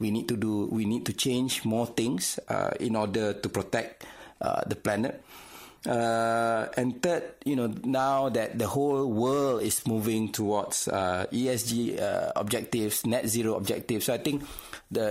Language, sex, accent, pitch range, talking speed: English, male, Malaysian, 110-135 Hz, 165 wpm